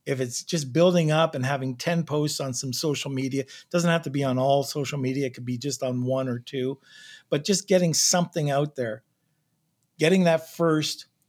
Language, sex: English, male